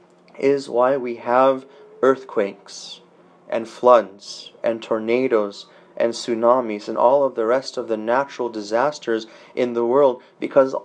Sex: male